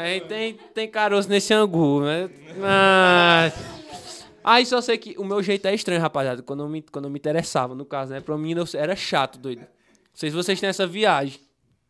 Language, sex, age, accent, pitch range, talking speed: Portuguese, male, 20-39, Brazilian, 160-210 Hz, 200 wpm